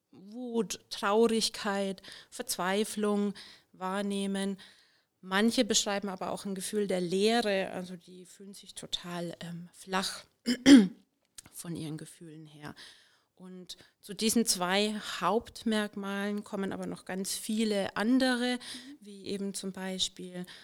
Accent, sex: German, female